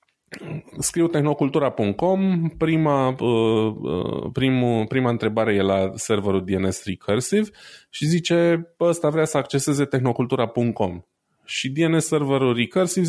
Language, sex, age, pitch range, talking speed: Romanian, male, 20-39, 100-135 Hz, 100 wpm